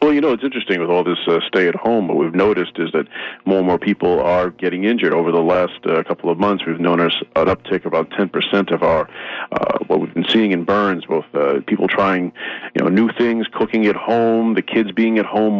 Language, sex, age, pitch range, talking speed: English, male, 40-59, 85-105 Hz, 240 wpm